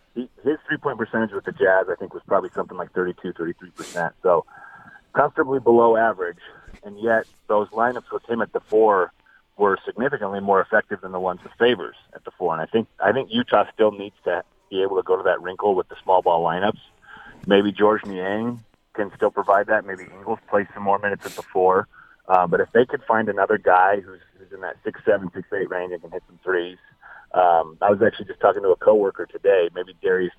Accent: American